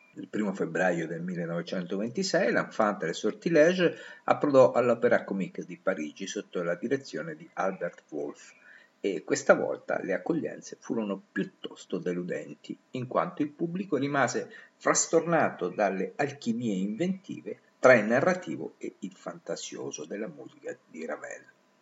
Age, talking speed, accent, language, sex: 50-69, 125 wpm, native, Italian, male